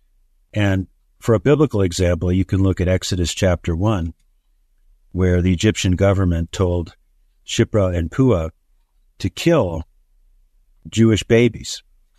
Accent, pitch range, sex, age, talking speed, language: American, 85-110 Hz, male, 50-69, 120 wpm, English